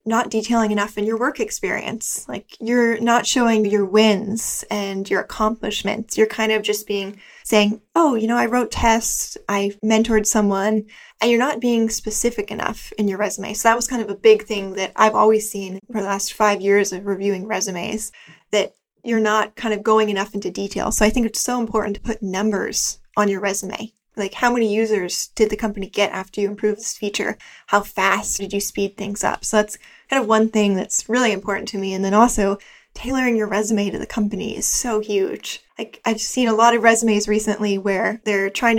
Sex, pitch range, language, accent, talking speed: female, 200-225 Hz, English, American, 205 wpm